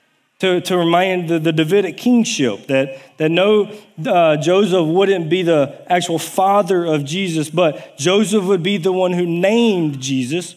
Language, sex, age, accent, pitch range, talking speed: English, male, 40-59, American, 150-180 Hz, 160 wpm